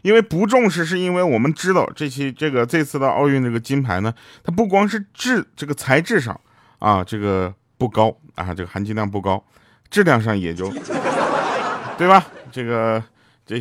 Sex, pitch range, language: male, 105-155 Hz, Chinese